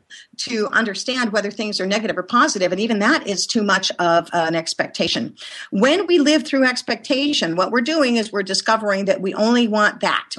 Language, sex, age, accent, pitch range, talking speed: English, female, 50-69, American, 190-265 Hz, 190 wpm